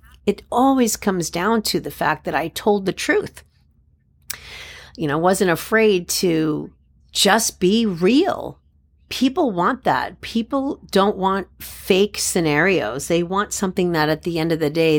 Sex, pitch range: female, 165-215 Hz